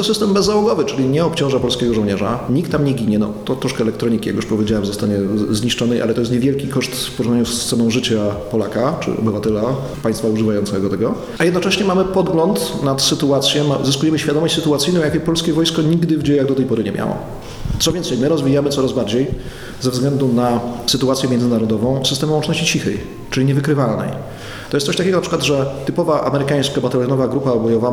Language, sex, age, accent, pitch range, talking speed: Polish, male, 30-49, native, 120-155 Hz, 185 wpm